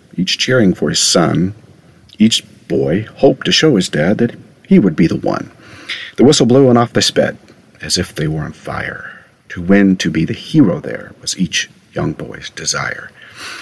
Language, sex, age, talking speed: English, male, 50-69, 190 wpm